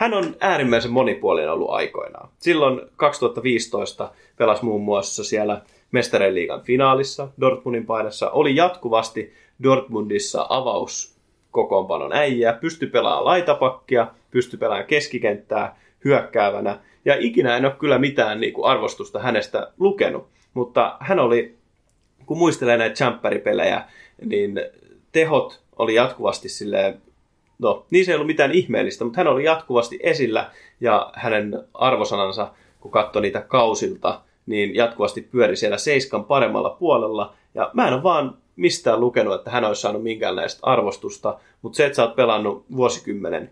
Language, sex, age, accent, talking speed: Finnish, male, 30-49, native, 130 wpm